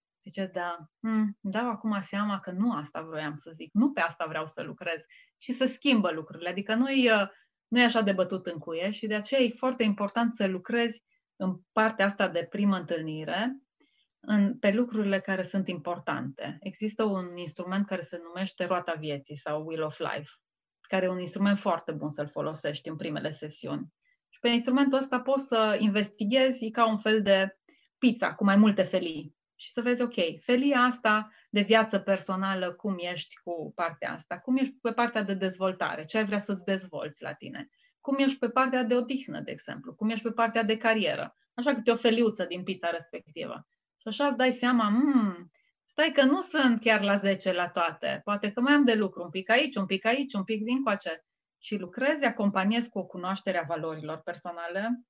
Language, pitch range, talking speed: Romanian, 180-235 Hz, 195 wpm